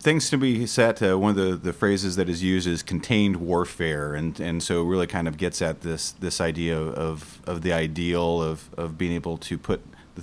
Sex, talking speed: male, 230 wpm